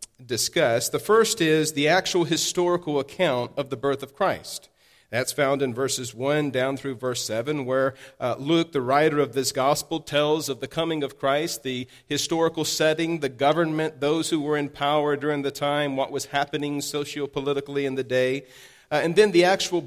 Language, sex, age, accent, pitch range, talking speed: English, male, 40-59, American, 135-165 Hz, 185 wpm